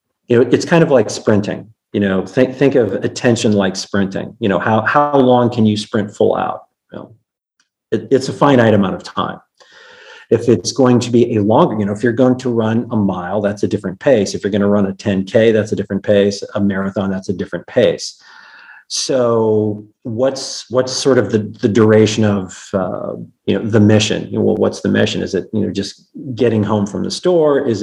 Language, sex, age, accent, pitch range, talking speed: English, male, 40-59, American, 100-115 Hz, 220 wpm